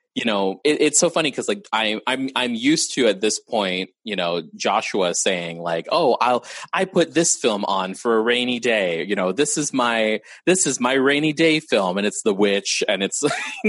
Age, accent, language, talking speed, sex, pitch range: 20-39, American, English, 220 wpm, male, 95-145 Hz